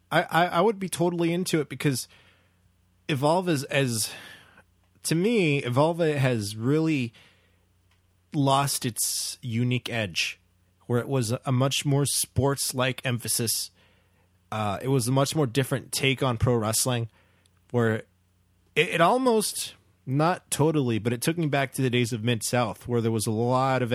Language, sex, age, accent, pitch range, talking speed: English, male, 20-39, American, 95-140 Hz, 160 wpm